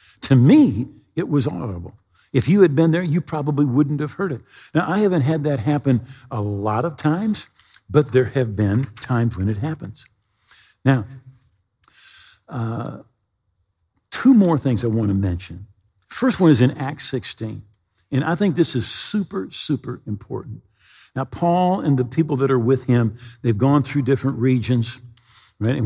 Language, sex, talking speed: English, male, 165 wpm